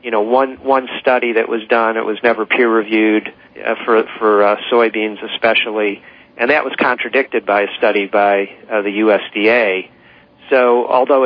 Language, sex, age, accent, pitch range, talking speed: English, male, 40-59, American, 105-120 Hz, 165 wpm